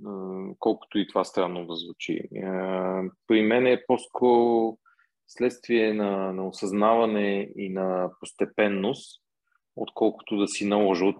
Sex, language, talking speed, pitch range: male, Bulgarian, 120 wpm, 100-125 Hz